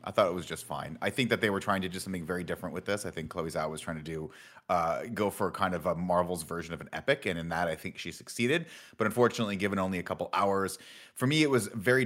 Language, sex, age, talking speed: English, male, 30-49, 285 wpm